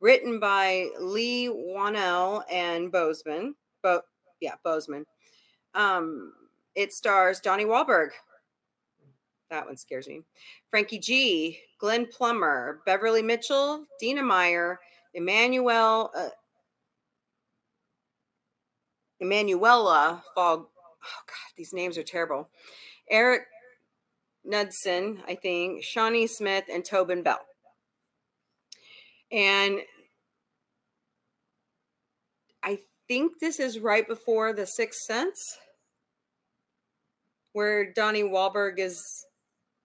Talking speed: 90 wpm